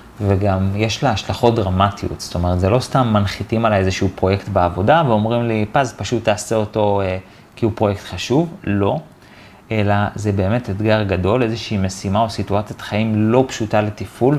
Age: 30-49